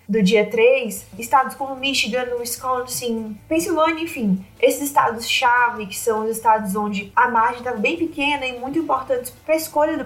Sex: female